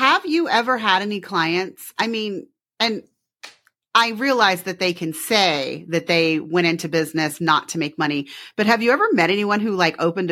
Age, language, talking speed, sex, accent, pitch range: 30-49, English, 190 wpm, female, American, 160-210 Hz